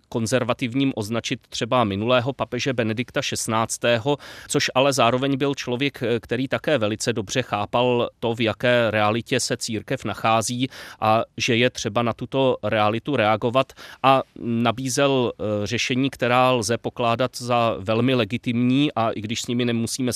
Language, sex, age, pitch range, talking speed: Czech, male, 30-49, 115-130 Hz, 140 wpm